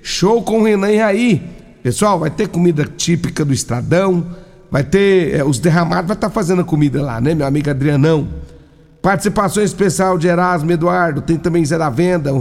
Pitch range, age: 155-190 Hz, 60-79